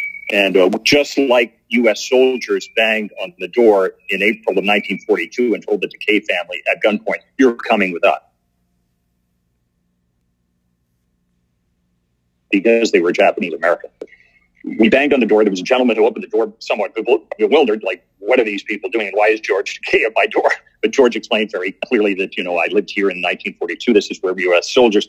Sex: male